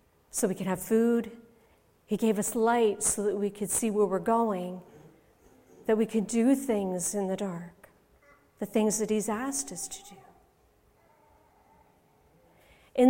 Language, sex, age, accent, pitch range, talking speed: English, female, 50-69, American, 200-270 Hz, 155 wpm